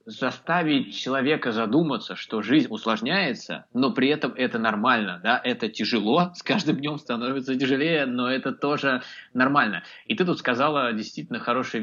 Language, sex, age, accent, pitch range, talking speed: Russian, male, 20-39, native, 110-155 Hz, 145 wpm